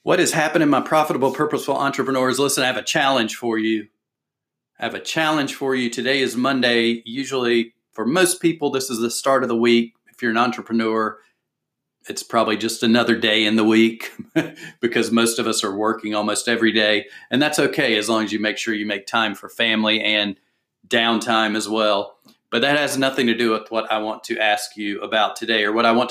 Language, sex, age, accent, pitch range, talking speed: English, male, 40-59, American, 110-130 Hz, 215 wpm